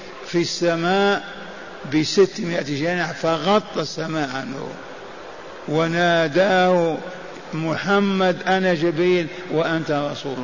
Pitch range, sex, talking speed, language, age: 155-185 Hz, male, 75 wpm, Arabic, 60-79